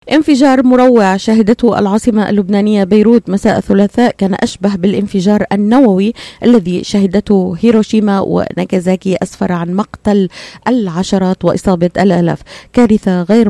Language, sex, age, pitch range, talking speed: Arabic, female, 30-49, 185-220 Hz, 105 wpm